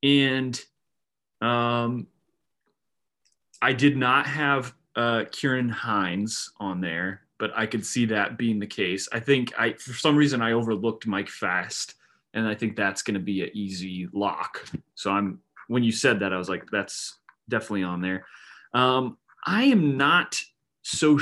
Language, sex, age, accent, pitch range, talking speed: English, male, 30-49, American, 105-130 Hz, 160 wpm